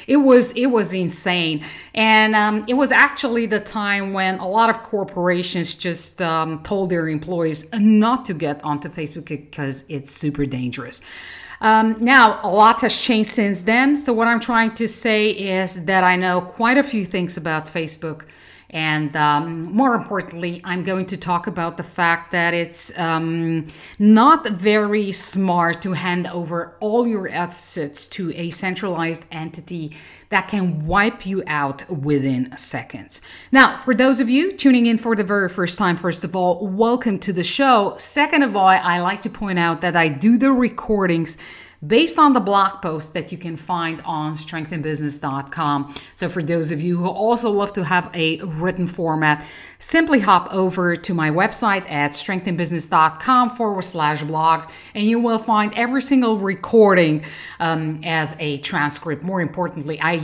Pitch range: 160-215 Hz